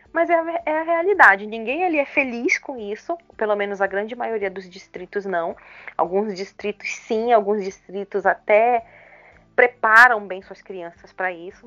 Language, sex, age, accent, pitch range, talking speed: Portuguese, female, 30-49, Brazilian, 200-260 Hz, 160 wpm